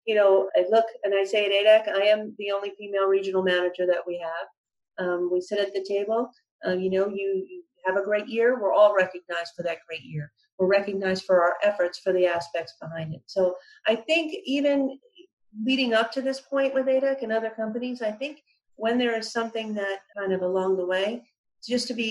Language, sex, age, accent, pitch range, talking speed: English, female, 40-59, American, 180-220 Hz, 215 wpm